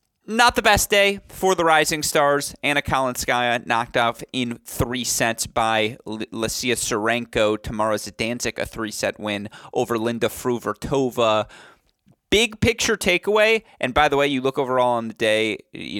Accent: American